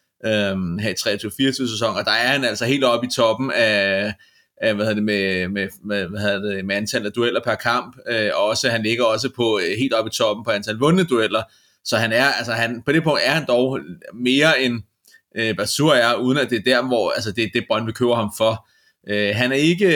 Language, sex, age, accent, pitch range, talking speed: Danish, male, 30-49, native, 110-130 Hz, 230 wpm